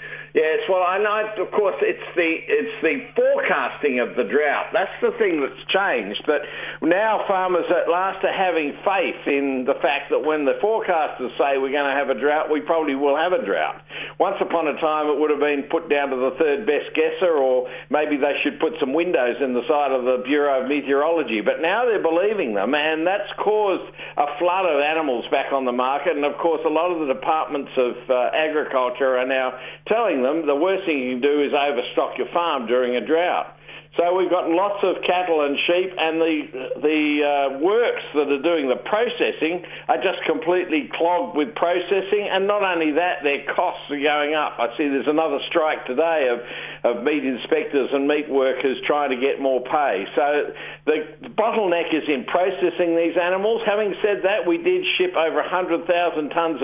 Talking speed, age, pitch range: 205 wpm, 60-79, 140-180 Hz